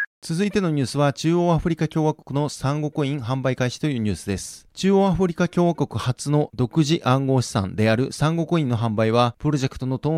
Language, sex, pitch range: Japanese, male, 130-160 Hz